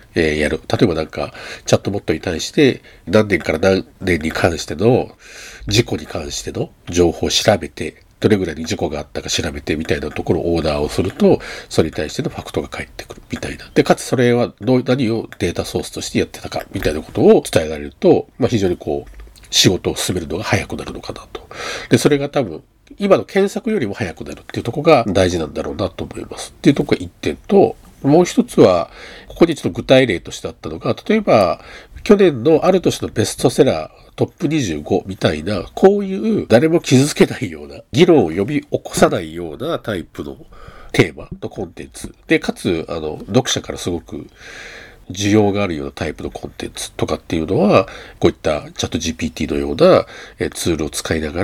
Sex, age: male, 50-69